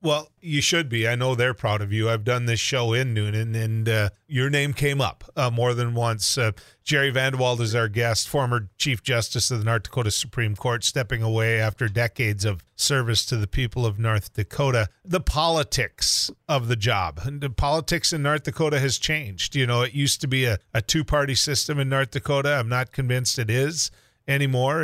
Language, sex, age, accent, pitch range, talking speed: English, male, 40-59, American, 115-140 Hz, 205 wpm